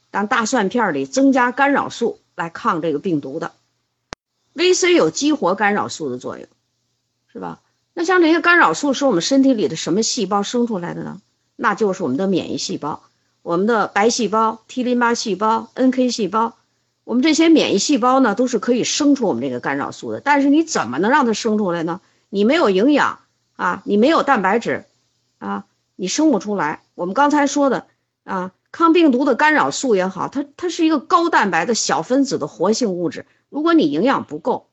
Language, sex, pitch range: Chinese, female, 210-290 Hz